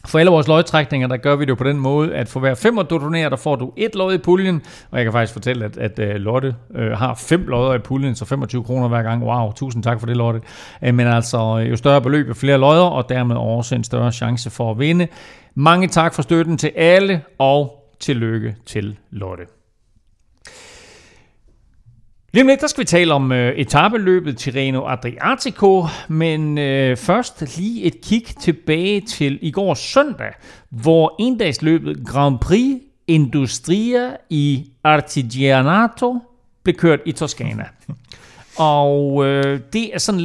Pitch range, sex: 125-170 Hz, male